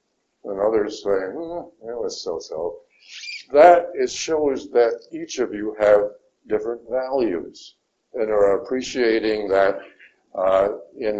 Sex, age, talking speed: male, 60-79, 125 wpm